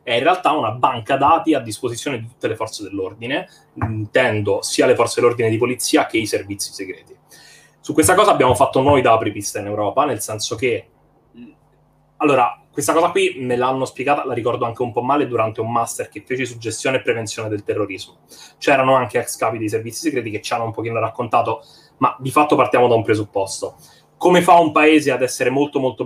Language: Italian